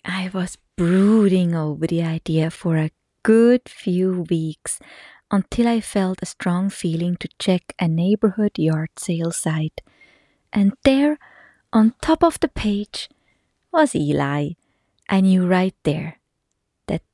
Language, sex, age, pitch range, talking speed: English, female, 20-39, 170-220 Hz, 135 wpm